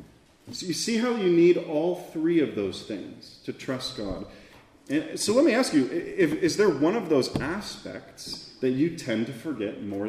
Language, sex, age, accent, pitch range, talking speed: English, male, 30-49, American, 110-170 Hz, 185 wpm